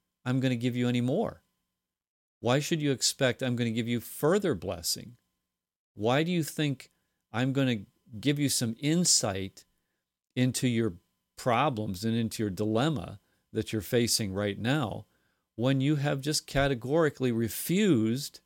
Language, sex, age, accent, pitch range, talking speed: English, male, 40-59, American, 105-140 Hz, 155 wpm